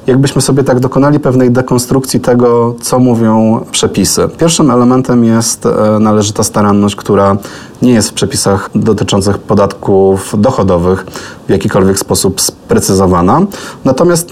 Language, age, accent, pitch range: Polish, 20-39, native, 100-120 Hz